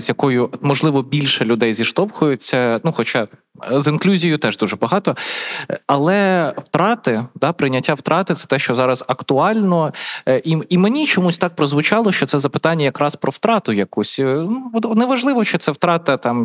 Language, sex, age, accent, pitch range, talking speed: Ukrainian, male, 20-39, native, 135-175 Hz, 155 wpm